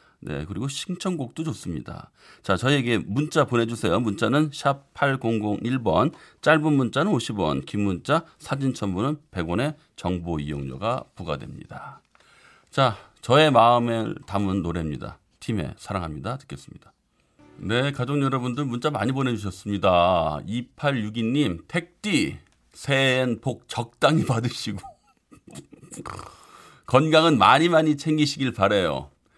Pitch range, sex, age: 85-130 Hz, male, 40-59